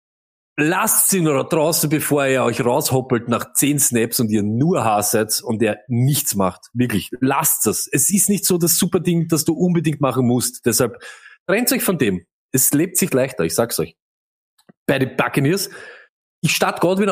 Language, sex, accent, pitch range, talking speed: German, male, German, 130-185 Hz, 180 wpm